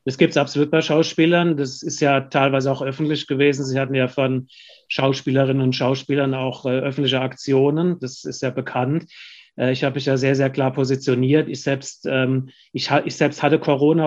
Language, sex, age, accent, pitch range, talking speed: German, male, 30-49, German, 135-150 Hz, 175 wpm